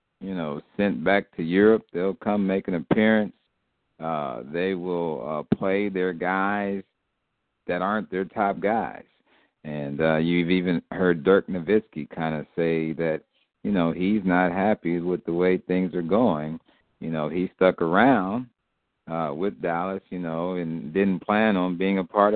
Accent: American